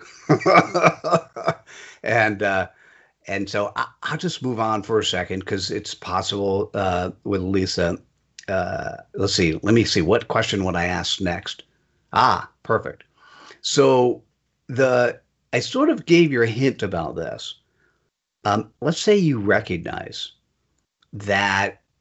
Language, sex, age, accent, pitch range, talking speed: English, male, 50-69, American, 95-130 Hz, 130 wpm